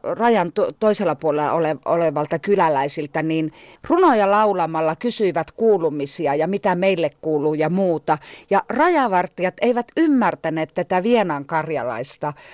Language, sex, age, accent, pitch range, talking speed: Finnish, female, 40-59, native, 165-235 Hz, 120 wpm